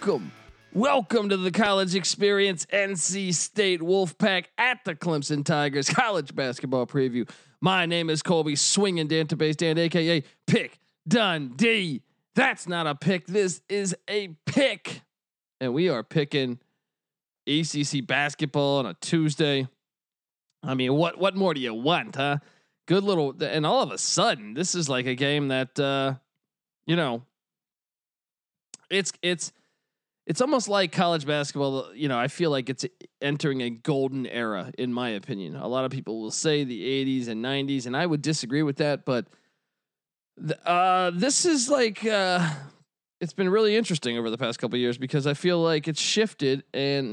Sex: male